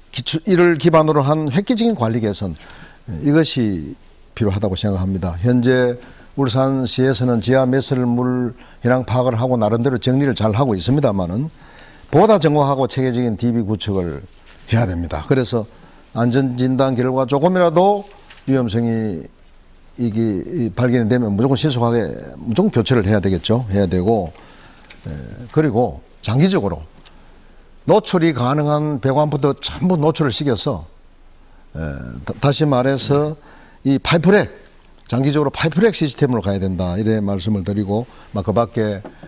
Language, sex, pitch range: Korean, male, 105-135 Hz